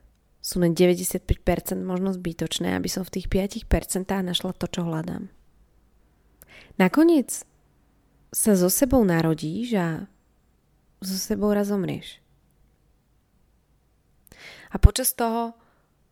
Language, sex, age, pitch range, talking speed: Slovak, female, 20-39, 170-210 Hz, 100 wpm